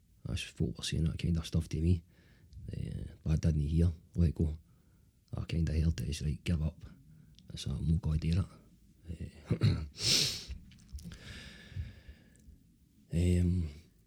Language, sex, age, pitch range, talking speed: English, male, 40-59, 80-90 Hz, 160 wpm